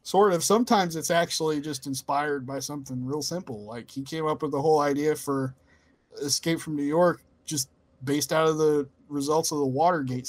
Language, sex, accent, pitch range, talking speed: English, male, American, 130-165 Hz, 190 wpm